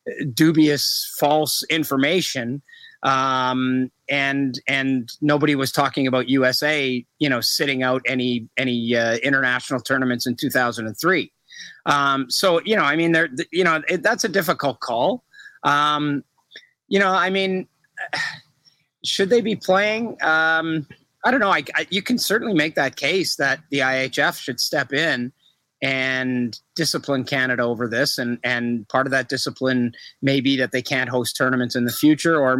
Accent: American